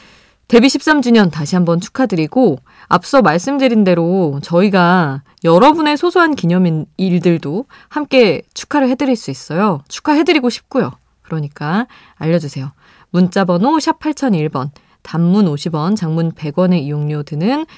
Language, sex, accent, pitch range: Korean, female, native, 160-235 Hz